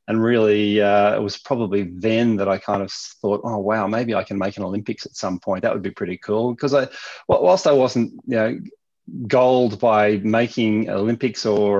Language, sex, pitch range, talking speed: English, male, 100-120 Hz, 200 wpm